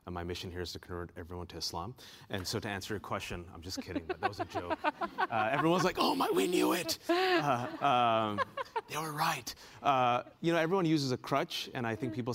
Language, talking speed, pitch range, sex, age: English, 235 wpm, 90-120 Hz, male, 30-49